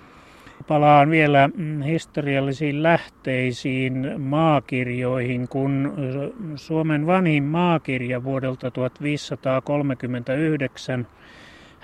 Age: 30-49